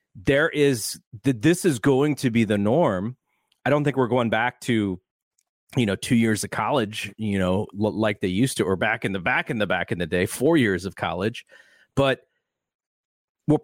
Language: English